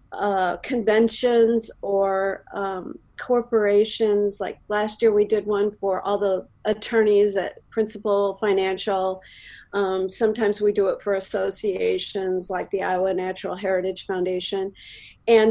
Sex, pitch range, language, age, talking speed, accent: female, 195-225 Hz, English, 40-59, 125 wpm, American